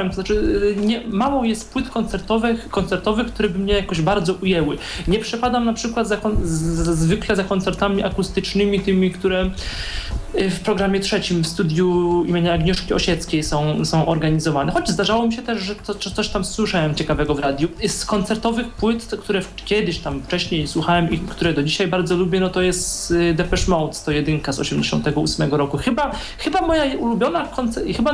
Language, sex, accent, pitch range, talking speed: Polish, male, native, 170-210 Hz, 160 wpm